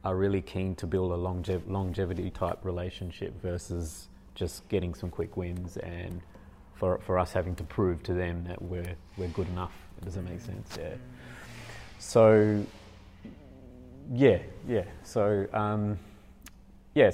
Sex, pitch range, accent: male, 90-105 Hz, Australian